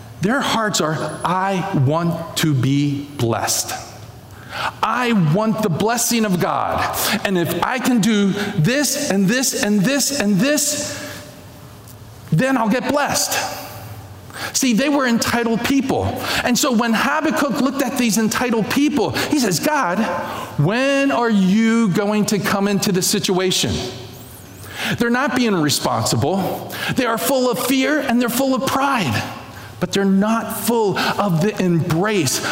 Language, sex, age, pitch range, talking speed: English, male, 40-59, 160-235 Hz, 140 wpm